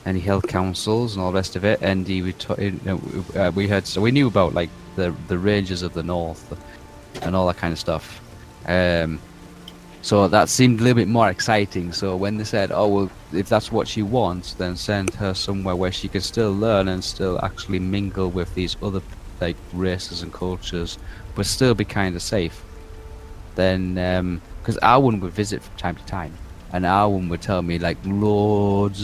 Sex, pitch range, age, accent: male, 90-105 Hz, 30-49, British